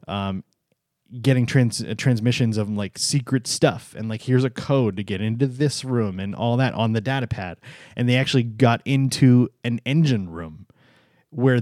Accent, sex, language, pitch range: American, male, English, 105-130 Hz